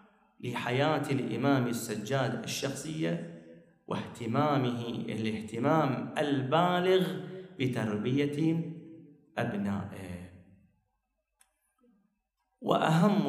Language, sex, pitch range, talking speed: Arabic, male, 135-205 Hz, 45 wpm